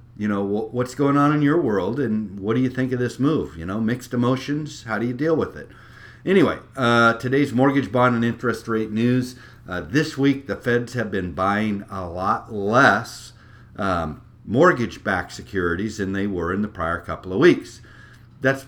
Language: English